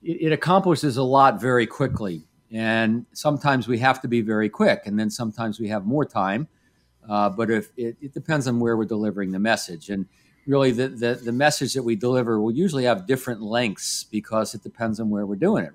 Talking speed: 210 wpm